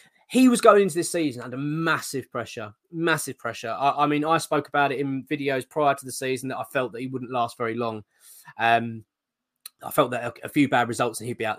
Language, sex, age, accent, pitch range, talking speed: English, male, 20-39, British, 125-165 Hz, 235 wpm